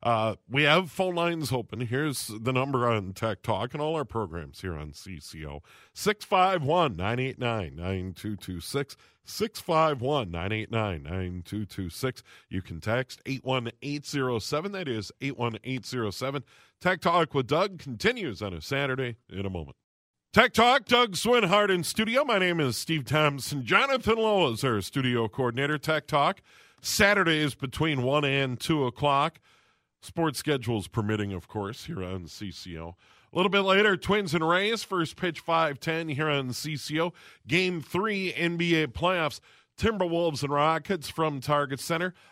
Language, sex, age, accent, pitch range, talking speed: English, male, 40-59, American, 115-165 Hz, 135 wpm